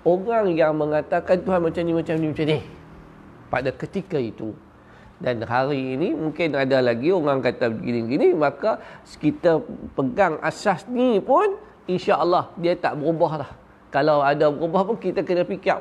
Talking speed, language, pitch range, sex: 160 wpm, Malay, 125-175 Hz, male